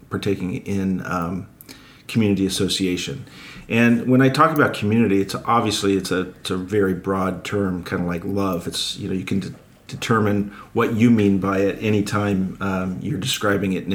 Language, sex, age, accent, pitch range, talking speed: English, male, 40-59, American, 90-105 Hz, 170 wpm